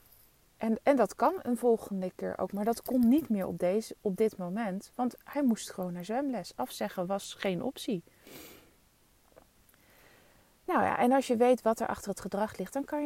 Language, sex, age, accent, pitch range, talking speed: Dutch, female, 30-49, Dutch, 195-255 Hz, 195 wpm